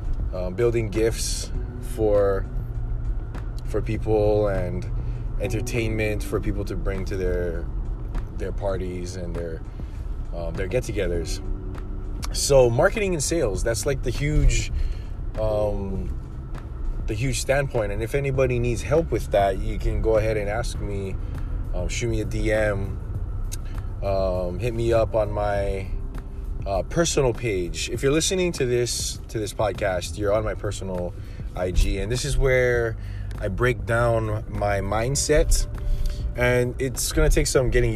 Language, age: English, 20-39